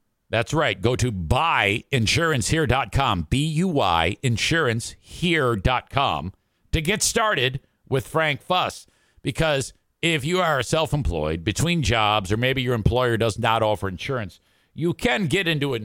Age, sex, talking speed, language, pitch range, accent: 50-69, male, 125 wpm, English, 100-140 Hz, American